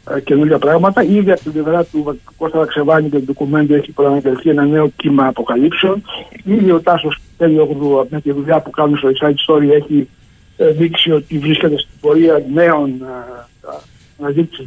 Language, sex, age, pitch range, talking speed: Greek, male, 60-79, 135-170 Hz, 170 wpm